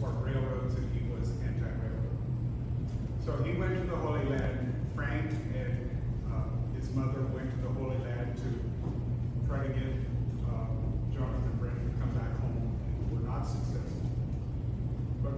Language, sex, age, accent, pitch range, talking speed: English, male, 40-59, American, 120-130 Hz, 155 wpm